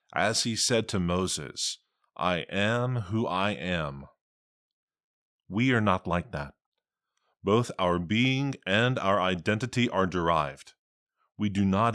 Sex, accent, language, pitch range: male, American, English, 90-115 Hz